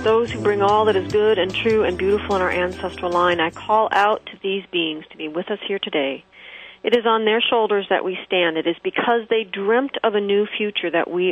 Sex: female